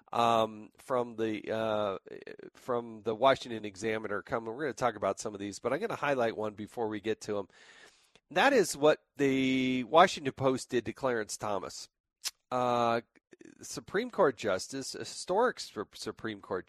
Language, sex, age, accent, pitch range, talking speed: English, male, 40-59, American, 120-170 Hz, 165 wpm